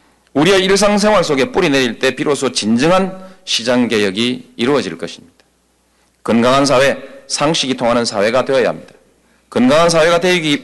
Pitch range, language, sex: 110-180 Hz, Korean, male